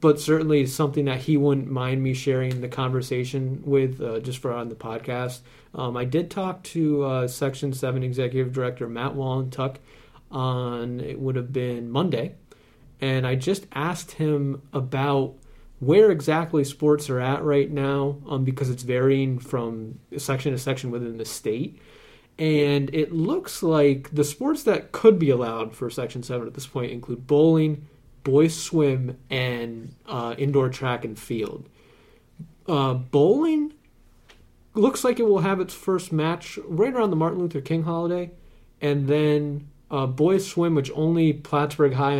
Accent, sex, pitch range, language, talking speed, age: American, male, 130-155 Hz, English, 160 wpm, 30-49